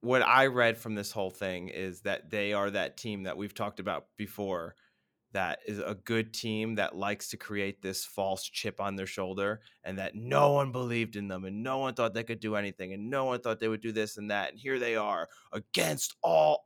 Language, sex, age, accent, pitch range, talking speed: English, male, 20-39, American, 95-115 Hz, 230 wpm